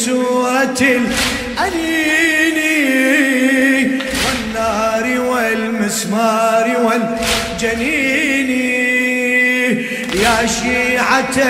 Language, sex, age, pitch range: Arabic, male, 30-49, 225-260 Hz